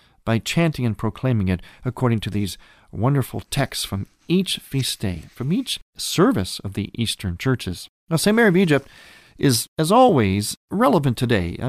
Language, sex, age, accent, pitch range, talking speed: English, male, 40-59, American, 100-140 Hz, 165 wpm